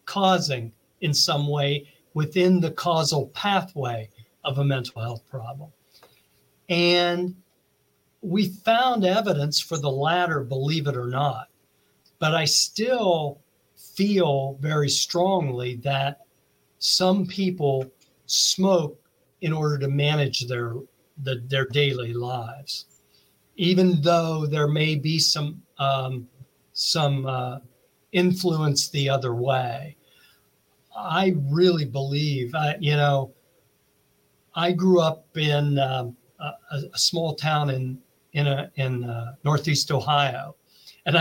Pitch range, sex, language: 135-180 Hz, male, English